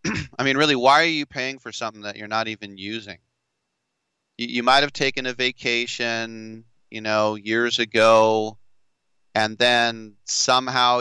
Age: 30-49